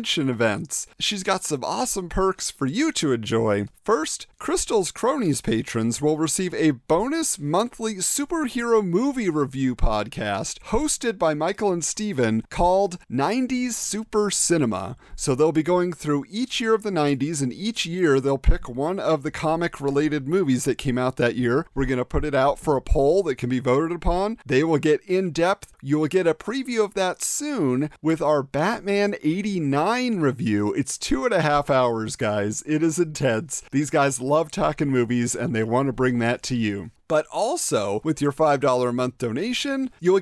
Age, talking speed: 40-59, 180 wpm